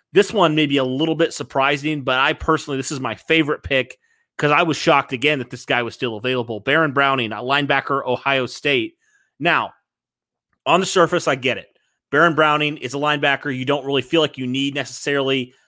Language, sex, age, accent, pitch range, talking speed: English, male, 30-49, American, 120-150 Hz, 205 wpm